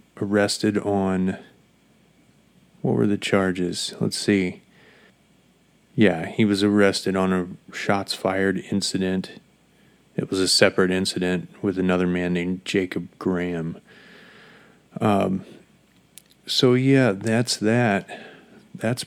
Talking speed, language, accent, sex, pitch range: 105 wpm, English, American, male, 95-105 Hz